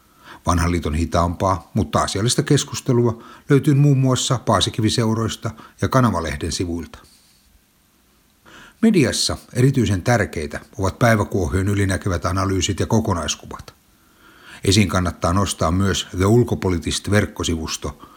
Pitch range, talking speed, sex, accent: 85-110 Hz, 90 wpm, male, native